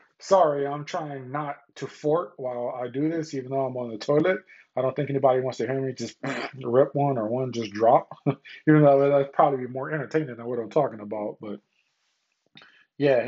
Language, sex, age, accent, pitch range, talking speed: English, male, 20-39, American, 125-150 Hz, 205 wpm